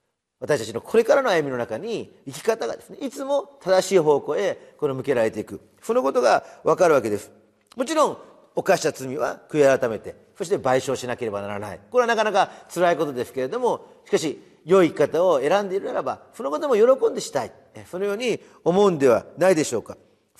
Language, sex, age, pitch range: Japanese, male, 40-59, 185-280 Hz